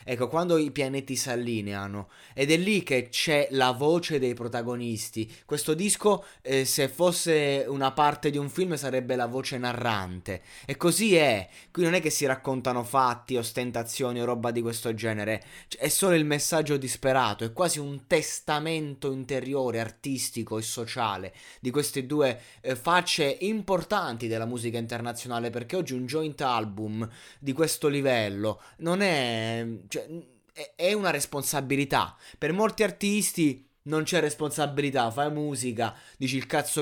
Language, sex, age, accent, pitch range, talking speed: Italian, male, 20-39, native, 125-150 Hz, 150 wpm